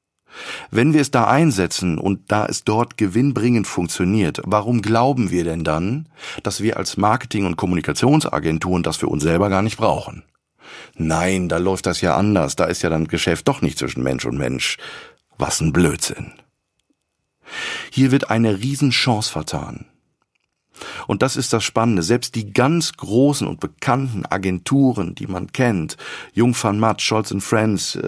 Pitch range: 95-130 Hz